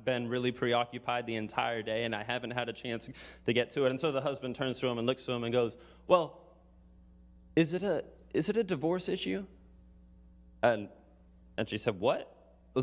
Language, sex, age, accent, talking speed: English, male, 30-49, American, 205 wpm